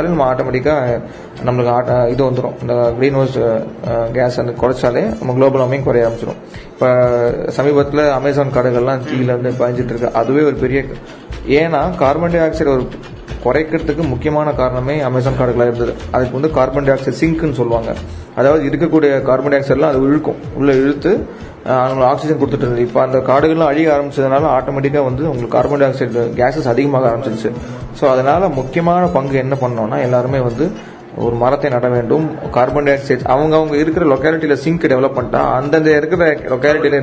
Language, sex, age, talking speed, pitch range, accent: Tamil, male, 30-49, 75 wpm, 125-150 Hz, native